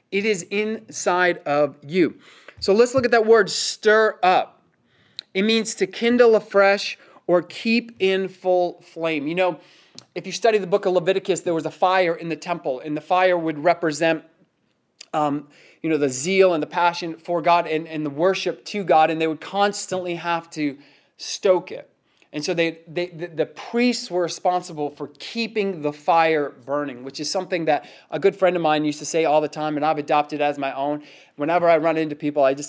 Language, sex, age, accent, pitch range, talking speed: English, male, 30-49, American, 165-230 Hz, 200 wpm